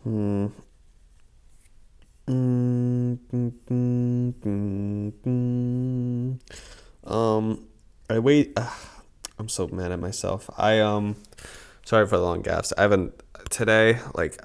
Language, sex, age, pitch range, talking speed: English, male, 20-39, 100-125 Hz, 85 wpm